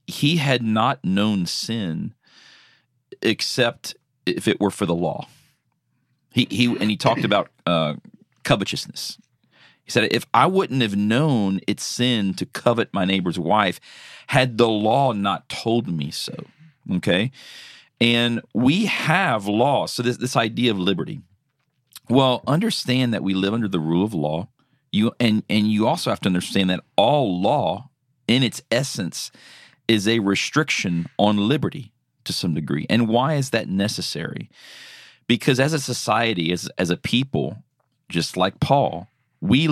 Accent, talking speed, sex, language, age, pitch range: American, 155 wpm, male, English, 40-59, 95-130 Hz